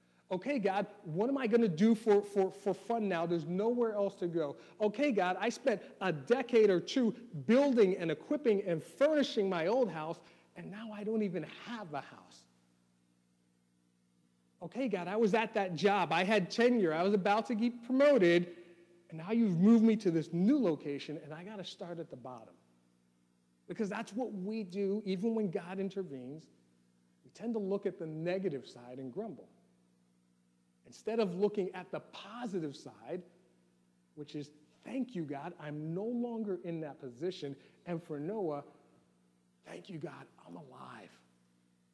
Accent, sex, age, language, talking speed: American, male, 40-59, English, 170 wpm